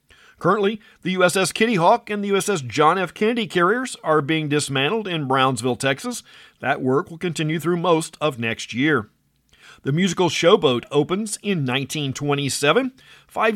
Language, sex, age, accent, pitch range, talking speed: English, male, 50-69, American, 150-205 Hz, 150 wpm